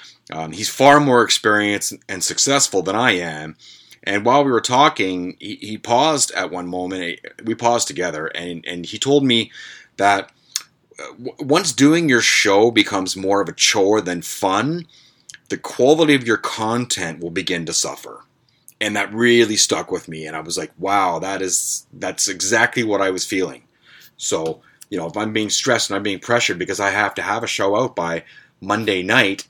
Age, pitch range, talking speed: 30-49, 95-125 Hz, 185 wpm